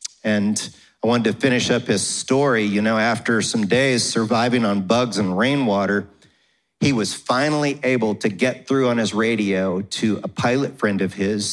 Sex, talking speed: male, 175 wpm